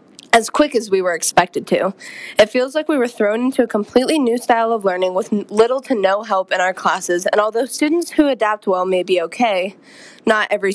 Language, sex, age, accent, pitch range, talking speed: English, female, 20-39, American, 190-255 Hz, 220 wpm